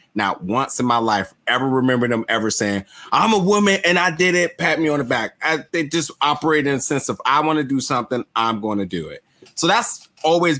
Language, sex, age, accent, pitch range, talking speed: English, male, 20-39, American, 100-140 Hz, 245 wpm